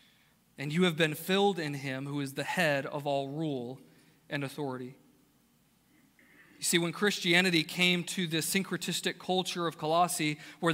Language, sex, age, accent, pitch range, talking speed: English, male, 40-59, American, 165-210 Hz, 155 wpm